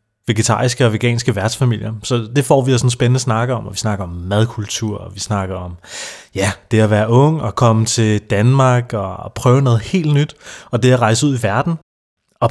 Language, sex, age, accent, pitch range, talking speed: Danish, male, 30-49, native, 110-135 Hz, 210 wpm